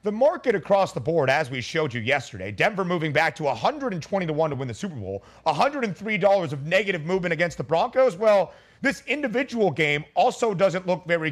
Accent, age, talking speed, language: American, 40-59, 195 wpm, English